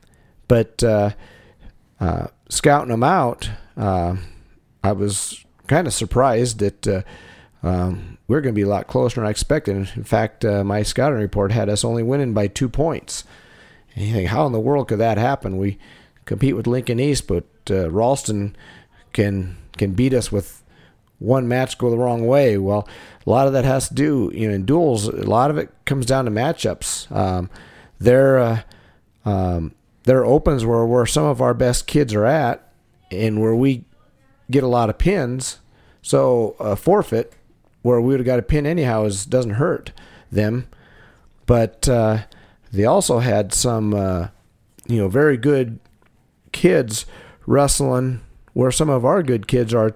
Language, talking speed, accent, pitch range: English, 175 wpm, American, 105-130 Hz